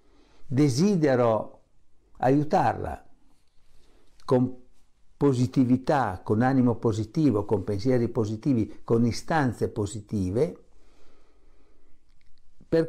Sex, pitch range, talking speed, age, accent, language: male, 105-155 Hz, 65 wpm, 60-79, native, Italian